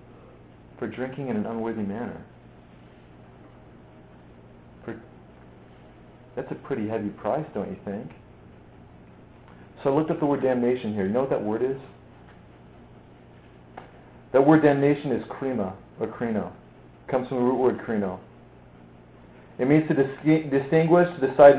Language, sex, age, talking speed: English, male, 40-59, 140 wpm